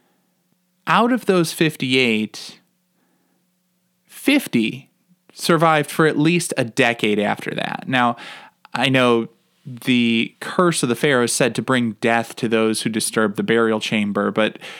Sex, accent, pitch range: male, American, 115-180 Hz